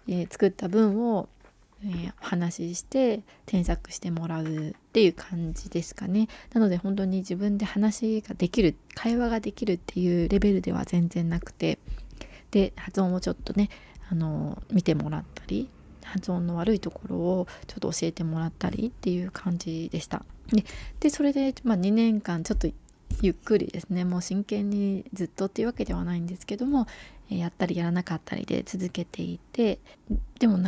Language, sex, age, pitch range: Japanese, female, 20-39, 175-220 Hz